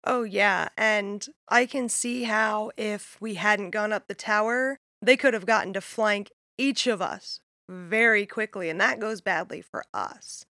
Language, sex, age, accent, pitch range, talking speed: English, female, 20-39, American, 195-235 Hz, 175 wpm